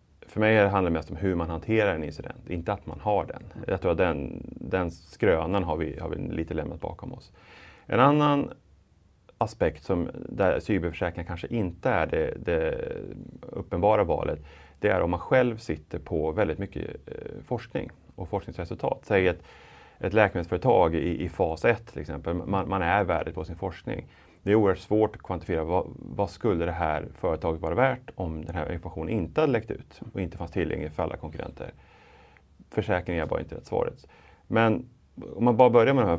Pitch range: 80-110 Hz